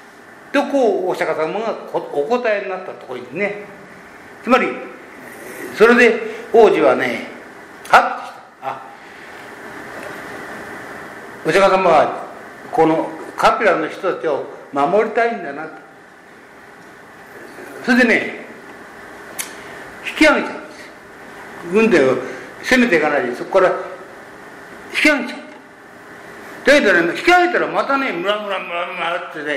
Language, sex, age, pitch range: Japanese, male, 60-79, 180-265 Hz